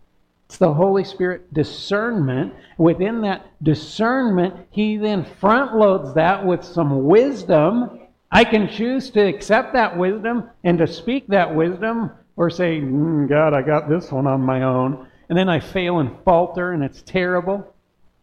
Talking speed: 160 wpm